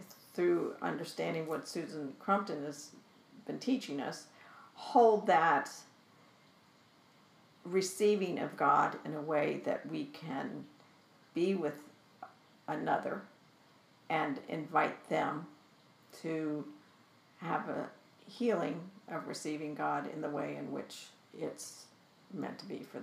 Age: 50-69